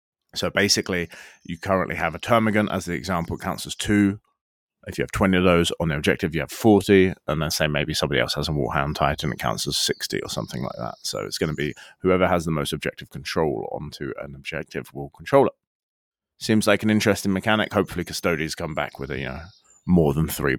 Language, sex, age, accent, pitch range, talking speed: English, male, 30-49, British, 75-100 Hz, 220 wpm